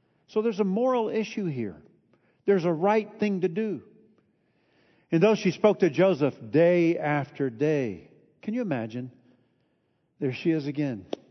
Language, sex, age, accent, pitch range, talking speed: English, male, 50-69, American, 140-205 Hz, 150 wpm